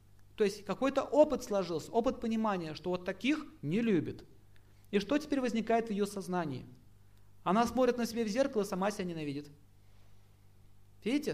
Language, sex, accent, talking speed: Russian, male, native, 155 wpm